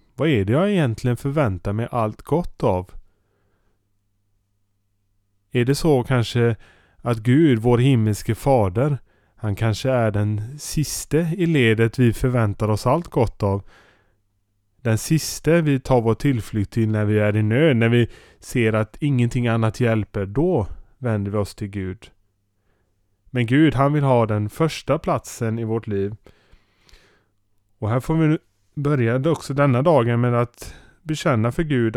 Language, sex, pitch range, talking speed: Swedish, male, 100-130 Hz, 155 wpm